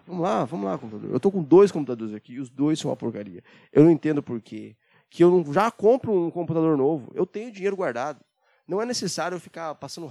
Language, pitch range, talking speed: Portuguese, 135-195 Hz, 230 wpm